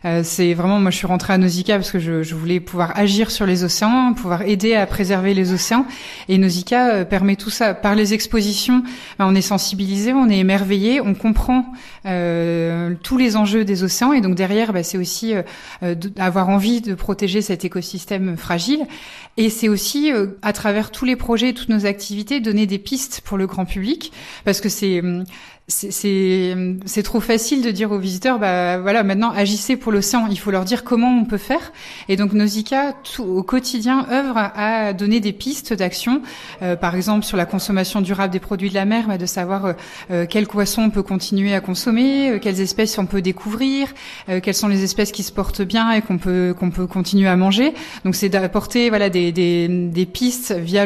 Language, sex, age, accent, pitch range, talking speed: French, female, 30-49, French, 185-225 Hz, 205 wpm